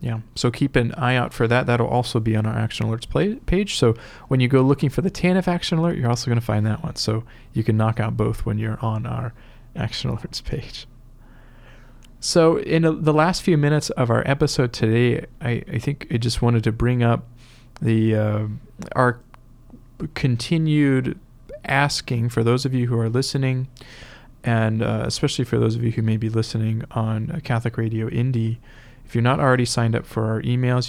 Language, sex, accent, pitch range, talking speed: English, male, American, 115-140 Hz, 200 wpm